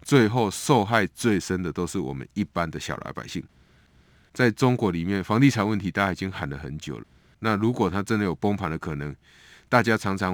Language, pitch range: Chinese, 85-105 Hz